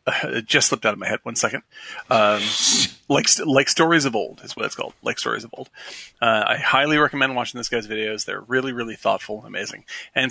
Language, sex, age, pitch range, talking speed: English, male, 30-49, 115-135 Hz, 225 wpm